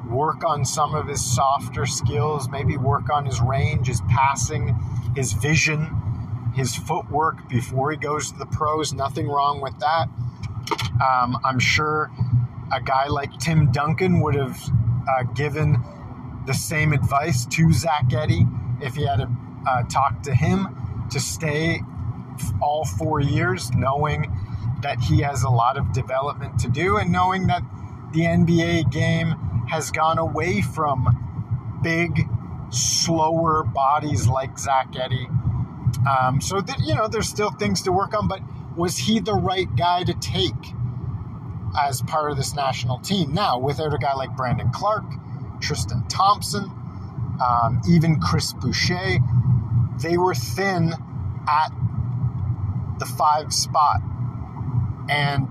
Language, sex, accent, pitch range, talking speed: English, male, American, 120-150 Hz, 140 wpm